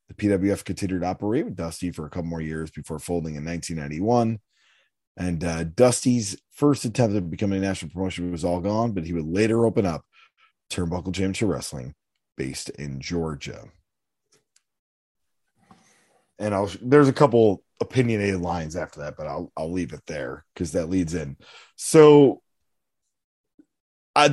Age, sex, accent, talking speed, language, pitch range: 30-49, male, American, 155 wpm, English, 85-115 Hz